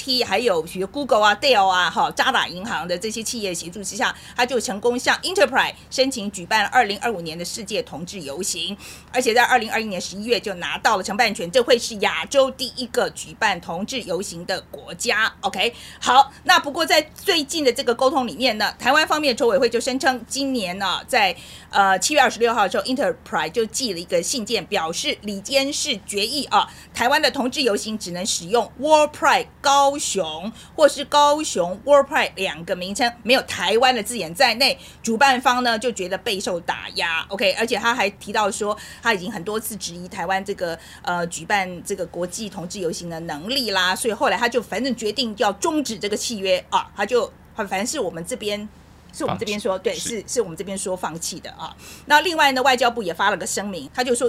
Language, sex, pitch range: Chinese, female, 195-265 Hz